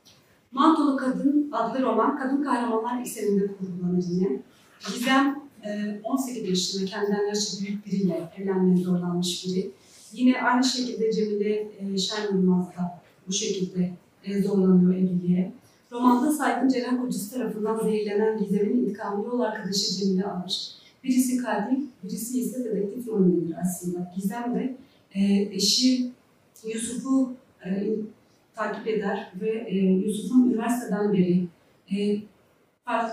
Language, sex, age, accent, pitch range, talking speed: Turkish, female, 40-59, native, 195-245 Hz, 110 wpm